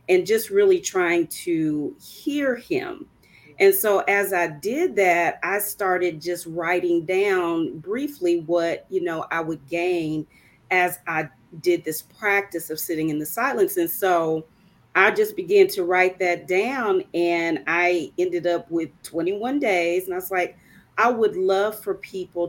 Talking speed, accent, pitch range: 160 wpm, American, 165-220 Hz